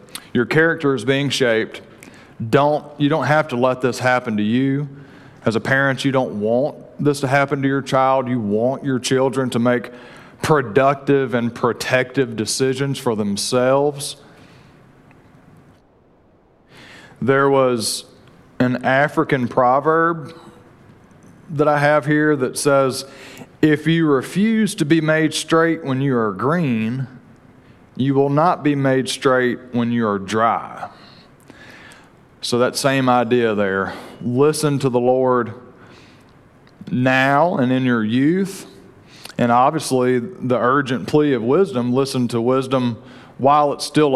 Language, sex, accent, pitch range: English, male, American, 125-145 Hz